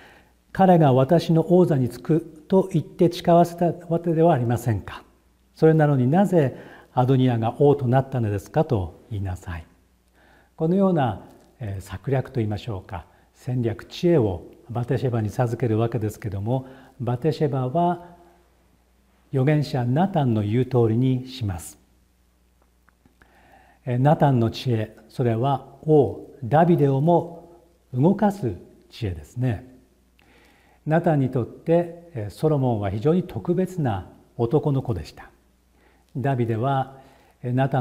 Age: 50-69